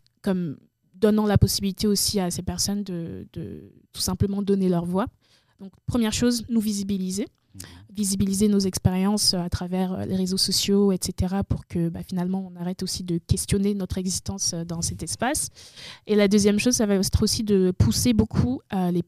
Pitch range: 175-200 Hz